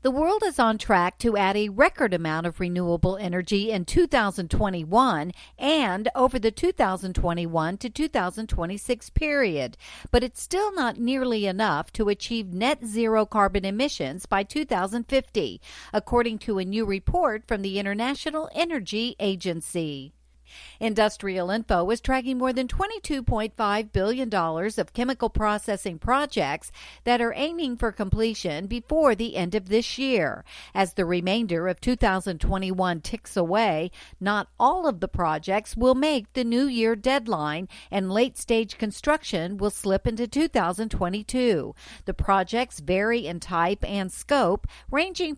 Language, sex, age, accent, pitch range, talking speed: English, female, 50-69, American, 185-250 Hz, 135 wpm